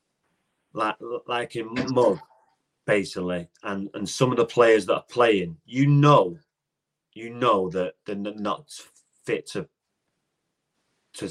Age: 30-49